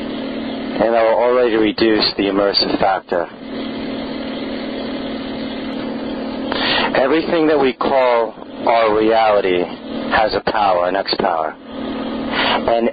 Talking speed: 95 wpm